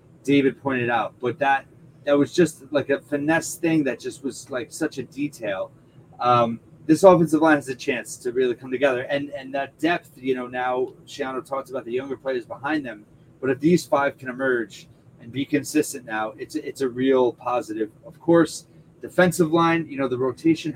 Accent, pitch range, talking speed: American, 130-155 Hz, 195 wpm